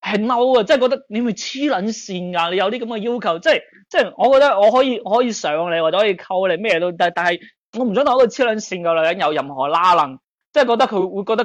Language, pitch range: Chinese, 170-250 Hz